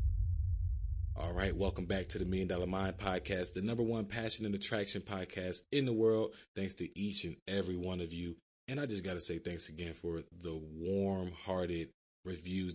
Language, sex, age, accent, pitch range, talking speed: English, male, 20-39, American, 85-105 Hz, 195 wpm